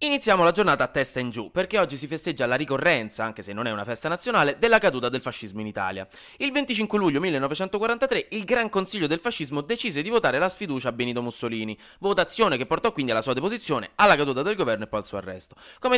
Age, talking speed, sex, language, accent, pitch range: 20-39, 225 wpm, male, Italian, native, 120-180 Hz